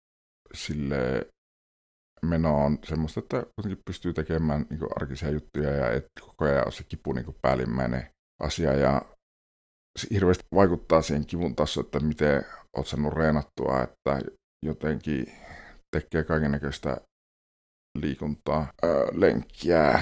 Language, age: Finnish, 50-69